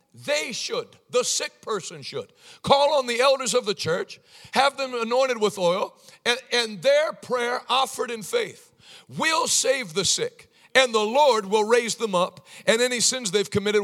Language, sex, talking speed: English, male, 180 wpm